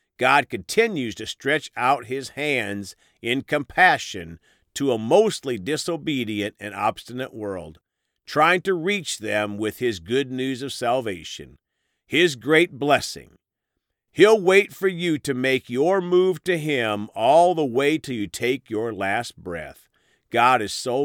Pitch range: 110-160 Hz